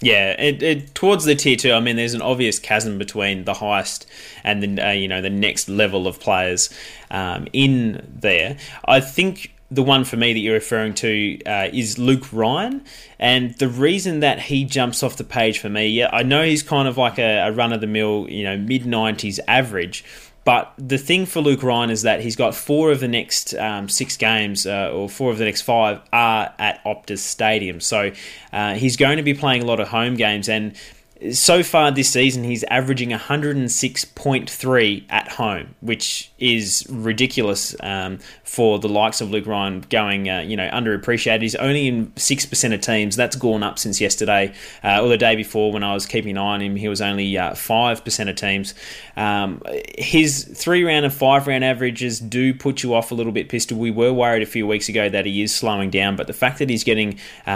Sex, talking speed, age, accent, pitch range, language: male, 210 wpm, 20-39, Australian, 105-130 Hz, English